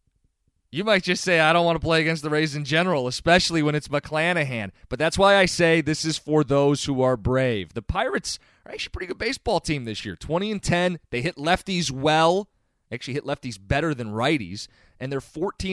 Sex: male